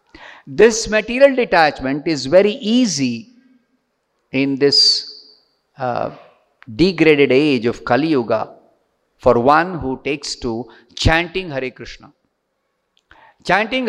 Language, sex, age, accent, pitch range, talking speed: English, male, 50-69, Indian, 145-225 Hz, 100 wpm